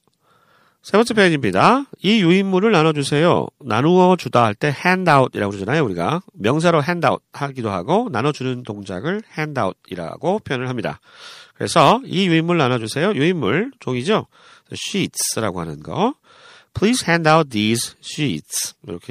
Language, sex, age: Korean, male, 40-59